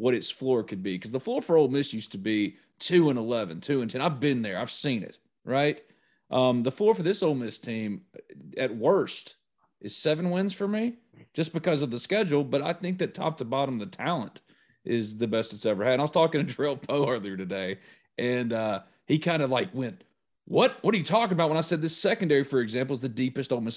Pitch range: 120-170 Hz